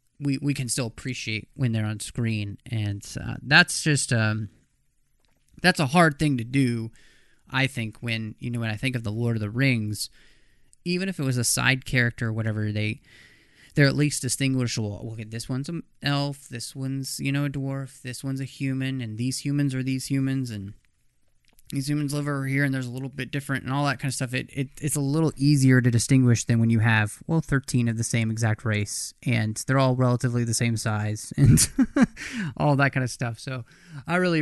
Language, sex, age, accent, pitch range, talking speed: English, male, 20-39, American, 115-145 Hz, 215 wpm